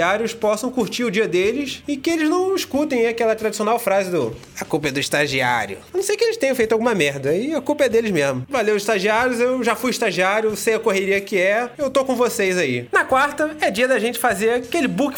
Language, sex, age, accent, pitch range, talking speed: Portuguese, male, 20-39, Brazilian, 160-245 Hz, 235 wpm